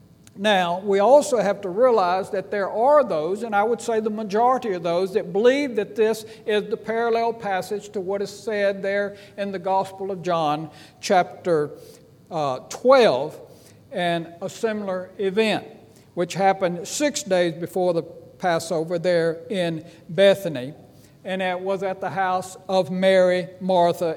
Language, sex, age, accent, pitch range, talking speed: English, male, 60-79, American, 175-215 Hz, 155 wpm